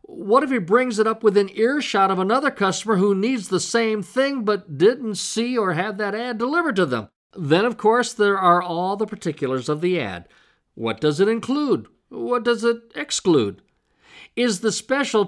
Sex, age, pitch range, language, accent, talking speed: male, 50-69, 160-220 Hz, English, American, 195 wpm